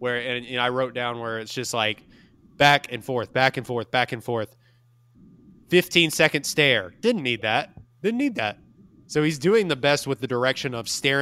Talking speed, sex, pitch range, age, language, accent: 205 wpm, male, 120-140 Hz, 20-39, English, American